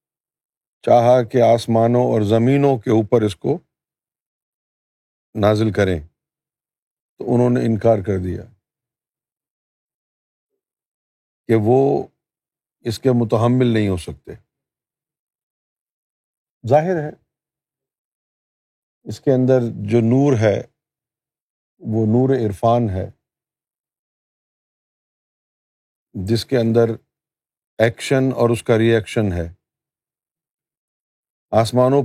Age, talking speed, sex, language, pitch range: 50-69, 90 wpm, male, Urdu, 110-130 Hz